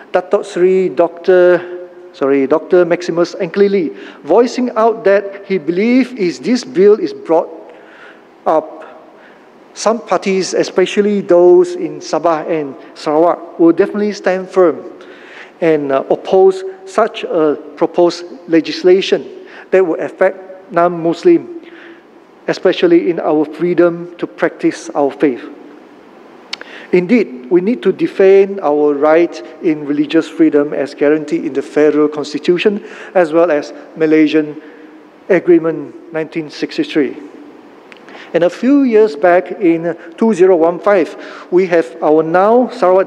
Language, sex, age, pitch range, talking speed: English, male, 50-69, 160-205 Hz, 110 wpm